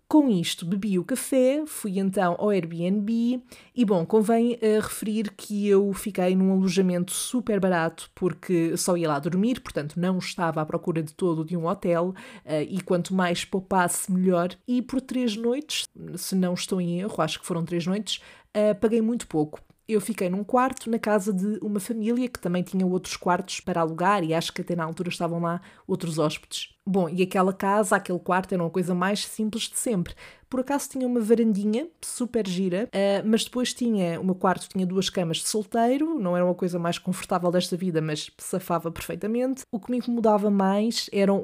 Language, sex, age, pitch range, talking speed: Portuguese, female, 20-39, 175-220 Hz, 190 wpm